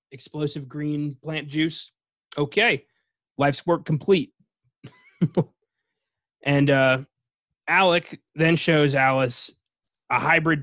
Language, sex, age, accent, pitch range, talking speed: English, male, 20-39, American, 135-170 Hz, 90 wpm